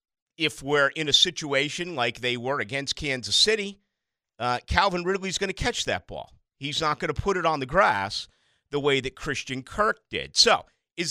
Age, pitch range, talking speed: 50-69, 125-185 Hz, 195 wpm